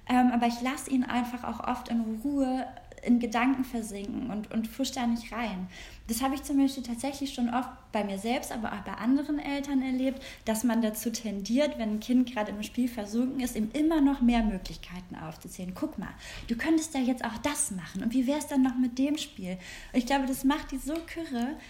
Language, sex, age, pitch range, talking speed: German, female, 20-39, 220-255 Hz, 220 wpm